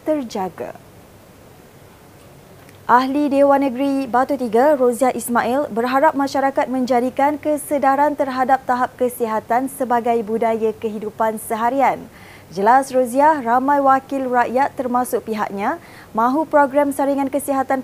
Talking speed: 100 wpm